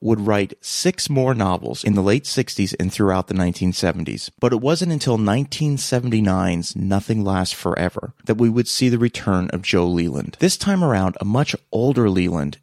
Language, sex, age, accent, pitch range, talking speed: English, male, 30-49, American, 95-120 Hz, 175 wpm